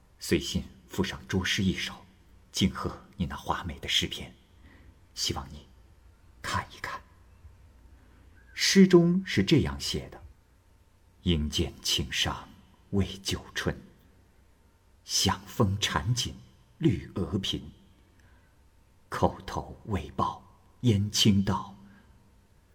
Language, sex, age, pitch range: Chinese, male, 50-69, 85-100 Hz